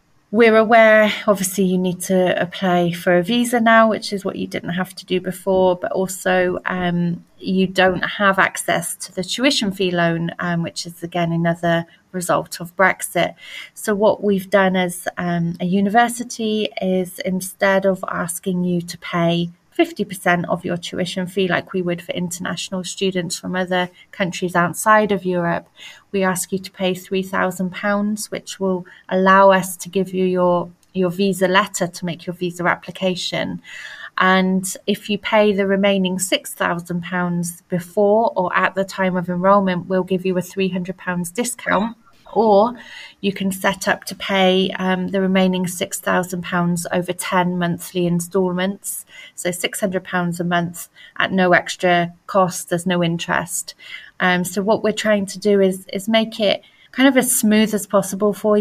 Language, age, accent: German, 30-49, British